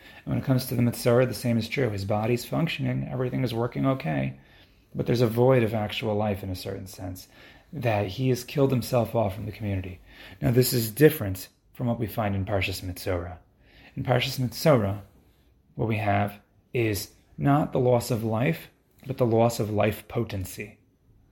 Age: 30-49